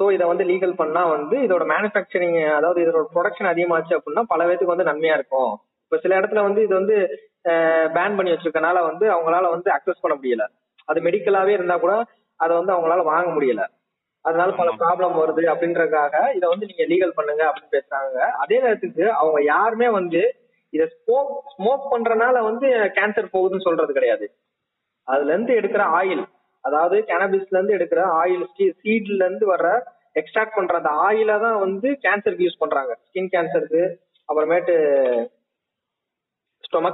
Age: 20-39